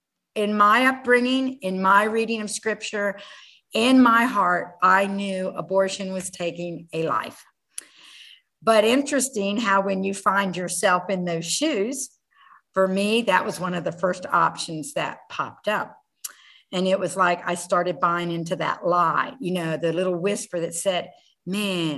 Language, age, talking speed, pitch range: English, 50-69, 160 wpm, 180-230 Hz